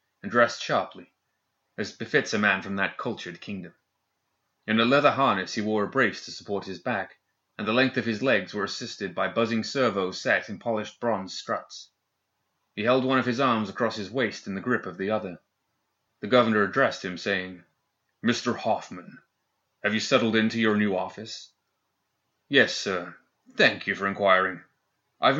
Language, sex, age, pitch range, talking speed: English, male, 30-49, 105-125 Hz, 175 wpm